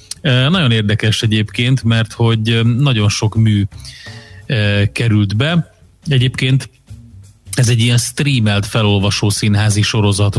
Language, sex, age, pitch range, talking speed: Hungarian, male, 30-49, 105-125 Hz, 115 wpm